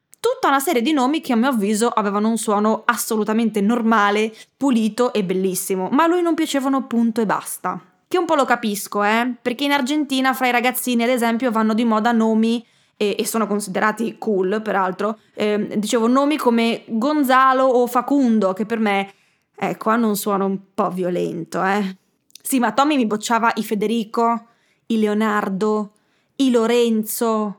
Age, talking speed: 20-39, 170 wpm